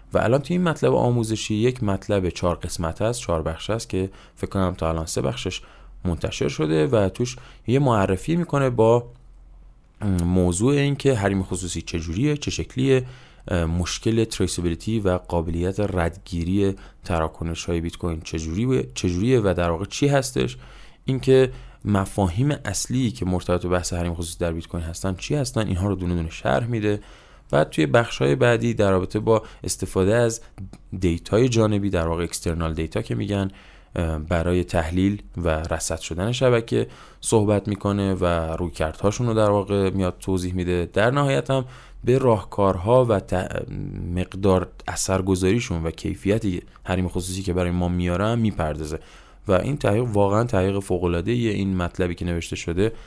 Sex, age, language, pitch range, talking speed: male, 20-39, Persian, 85-110 Hz, 155 wpm